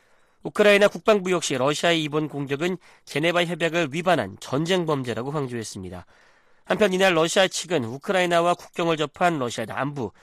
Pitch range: 135-175 Hz